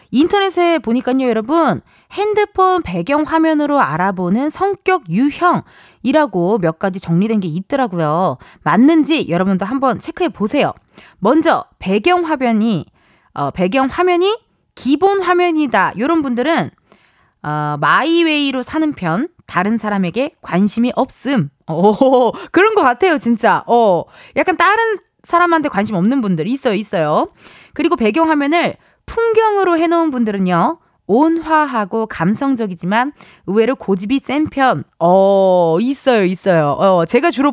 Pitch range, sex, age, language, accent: 205-325 Hz, female, 20-39, Korean, native